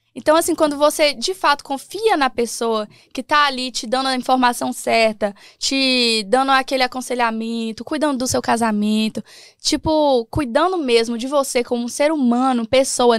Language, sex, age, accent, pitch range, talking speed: English, female, 10-29, Brazilian, 230-295 Hz, 160 wpm